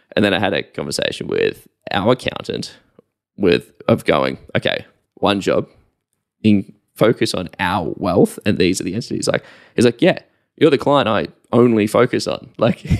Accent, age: Australian, 10-29